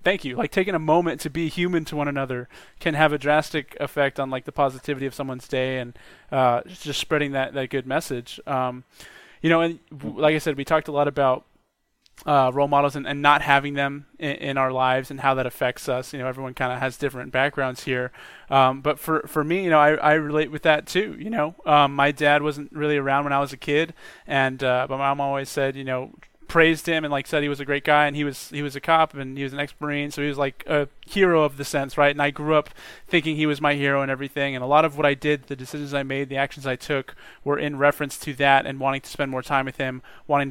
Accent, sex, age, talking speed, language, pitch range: American, male, 20-39, 260 wpm, English, 135-155 Hz